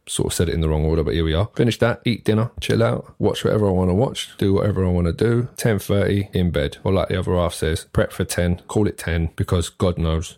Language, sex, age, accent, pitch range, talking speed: English, male, 20-39, British, 80-100 Hz, 280 wpm